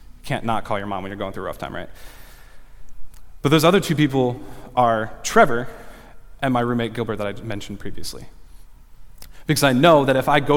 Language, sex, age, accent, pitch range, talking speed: English, male, 20-39, American, 110-140 Hz, 200 wpm